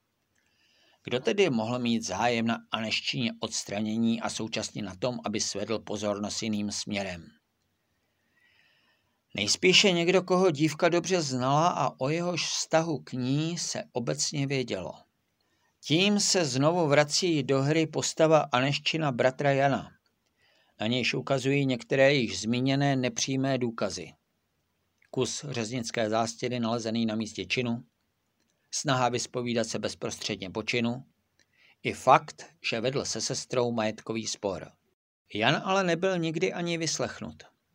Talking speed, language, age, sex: 120 wpm, Czech, 50-69, male